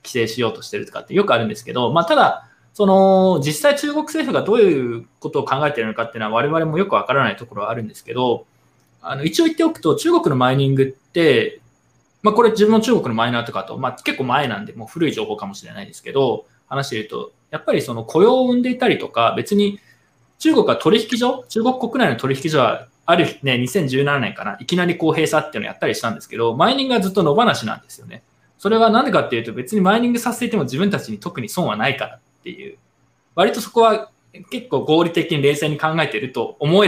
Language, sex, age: Japanese, male, 20-39